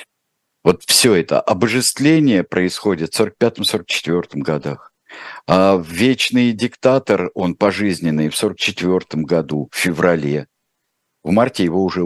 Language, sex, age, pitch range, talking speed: Russian, male, 50-69, 80-115 Hz, 110 wpm